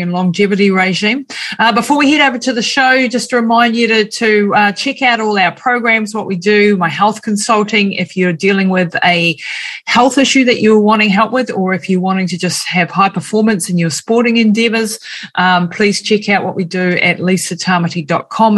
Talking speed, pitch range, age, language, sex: 200 wpm, 170-210 Hz, 30-49, English, female